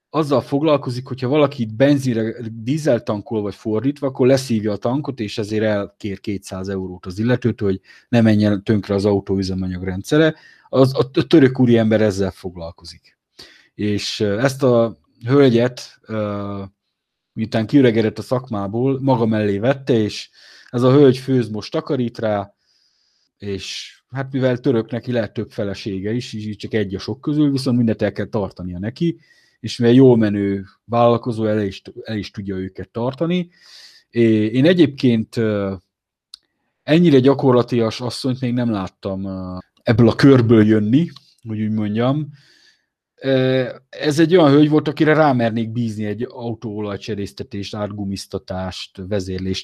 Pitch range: 100-130 Hz